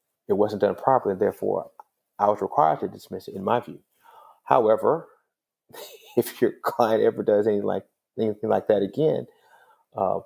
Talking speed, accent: 160 wpm, American